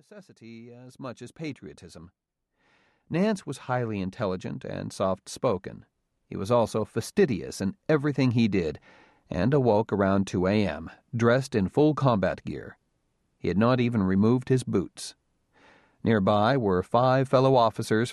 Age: 40-59